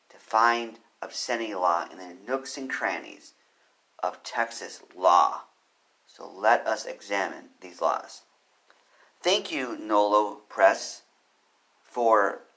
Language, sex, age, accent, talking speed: English, male, 40-59, American, 105 wpm